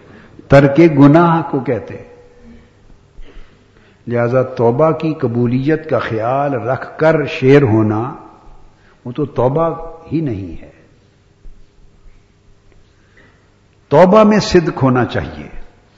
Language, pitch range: Urdu, 100-135 Hz